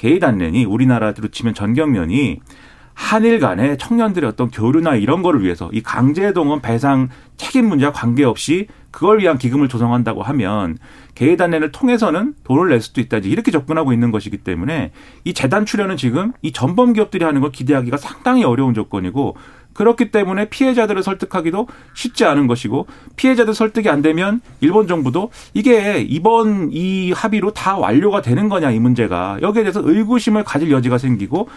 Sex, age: male, 40-59